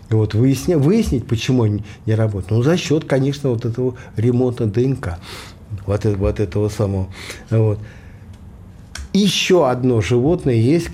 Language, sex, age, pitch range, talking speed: Russian, male, 50-69, 105-140 Hz, 130 wpm